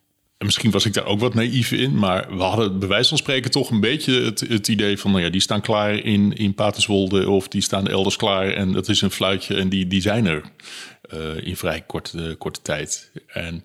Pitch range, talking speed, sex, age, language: 90-110 Hz, 240 wpm, male, 30-49, Dutch